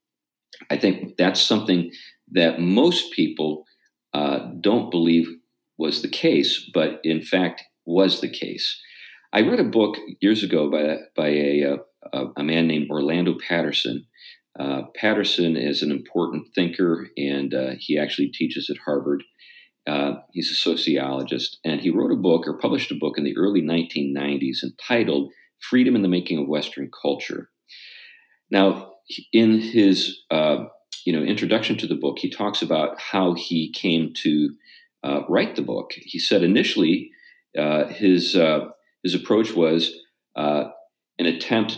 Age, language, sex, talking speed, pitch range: 50-69, English, male, 150 wpm, 70-95 Hz